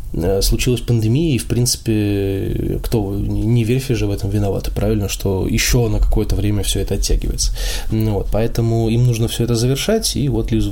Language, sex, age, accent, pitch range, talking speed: Russian, male, 20-39, native, 105-120 Hz, 175 wpm